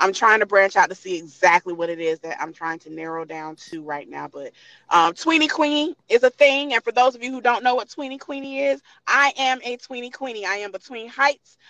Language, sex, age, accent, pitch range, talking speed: English, female, 30-49, American, 205-285 Hz, 245 wpm